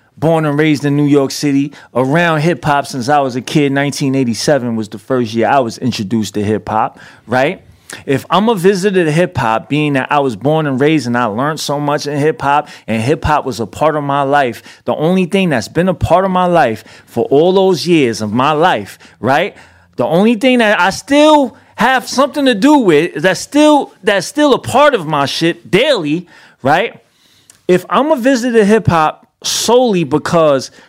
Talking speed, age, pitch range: 210 wpm, 30-49, 130-185 Hz